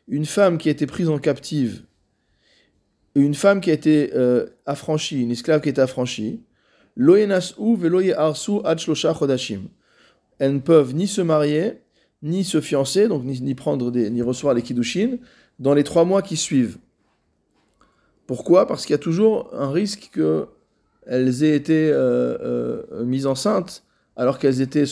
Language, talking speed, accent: French, 150 wpm, French